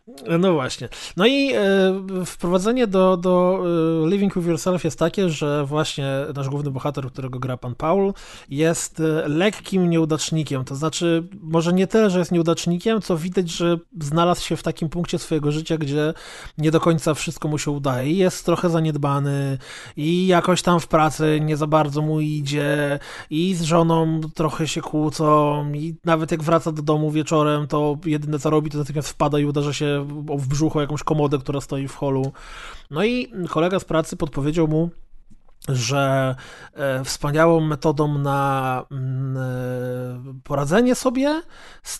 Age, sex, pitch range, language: 20-39, male, 145-175 Hz, Polish